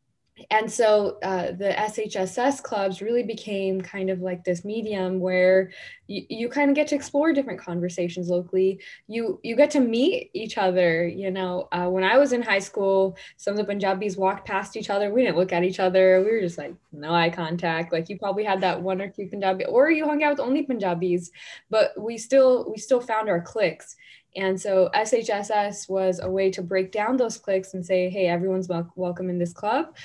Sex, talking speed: female, 210 wpm